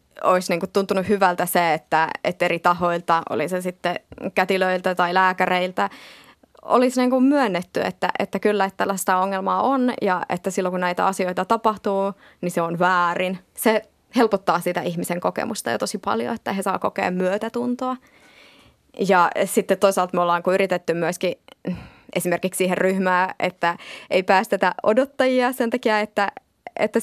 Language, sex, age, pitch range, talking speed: Finnish, female, 20-39, 180-210 Hz, 140 wpm